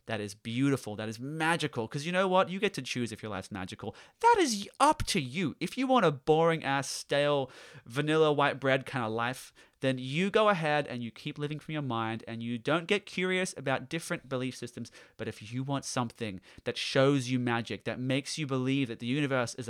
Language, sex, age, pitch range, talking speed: English, male, 30-49, 115-165 Hz, 220 wpm